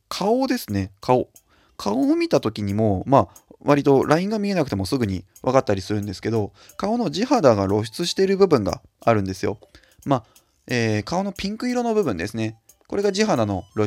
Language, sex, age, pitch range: Japanese, male, 20-39, 105-145 Hz